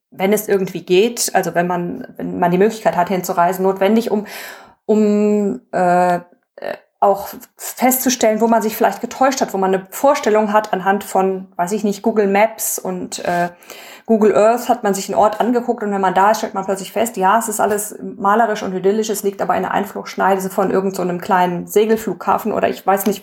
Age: 20-39